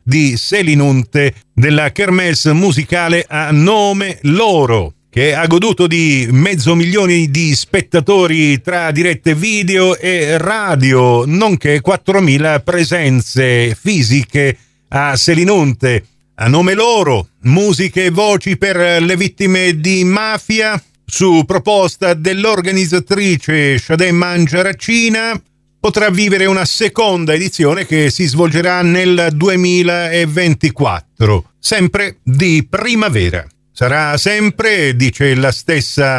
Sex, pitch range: male, 140-190 Hz